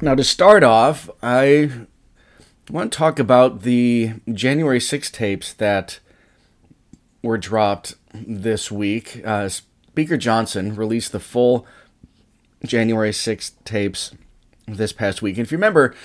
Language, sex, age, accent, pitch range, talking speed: English, male, 30-49, American, 100-125 Hz, 125 wpm